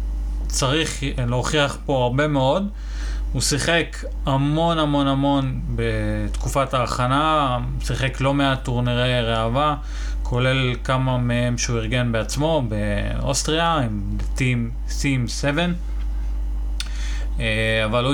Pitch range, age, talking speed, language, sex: 115-140 Hz, 30-49, 100 wpm, Hebrew, male